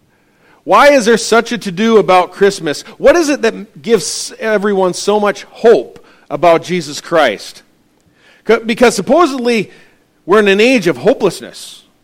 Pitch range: 145-220 Hz